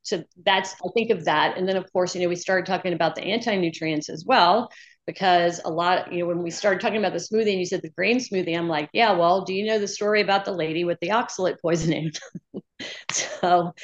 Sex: female